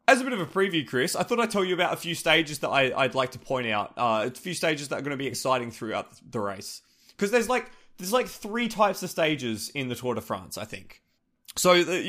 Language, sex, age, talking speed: English, male, 20-39, 270 wpm